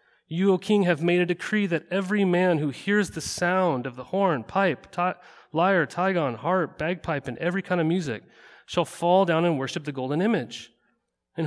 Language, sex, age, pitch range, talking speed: English, male, 30-49, 140-175 Hz, 195 wpm